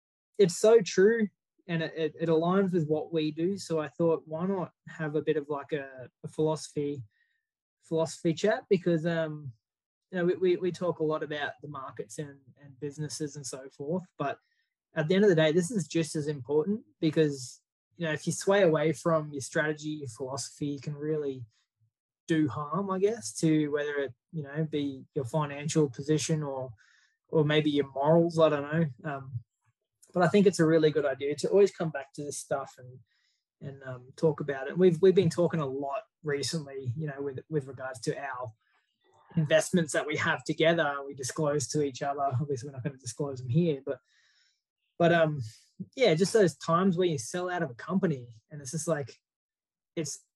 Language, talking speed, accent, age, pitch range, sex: English, 200 wpm, Australian, 20-39, 140-170 Hz, male